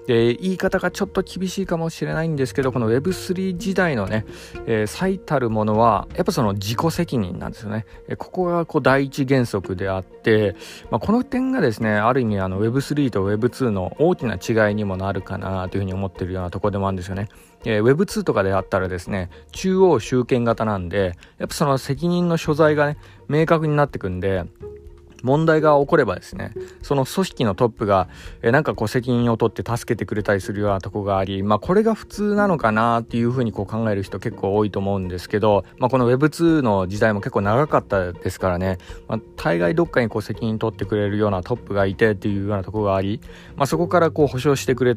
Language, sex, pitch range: Japanese, male, 100-140 Hz